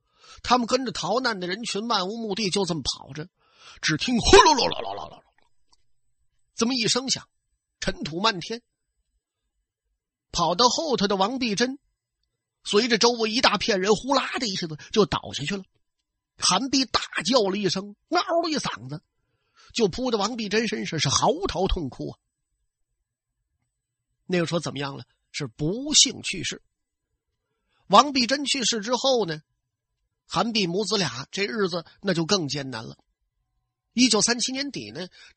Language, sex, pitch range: Chinese, male, 160-240 Hz